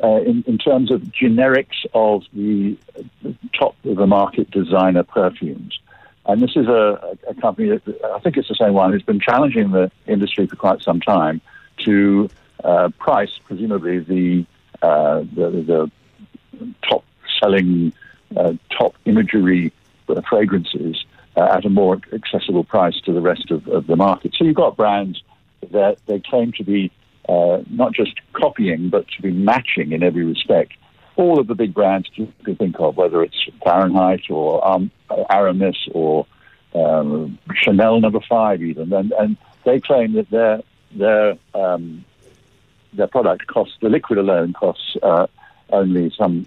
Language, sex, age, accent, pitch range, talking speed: English, male, 60-79, British, 85-110 Hz, 160 wpm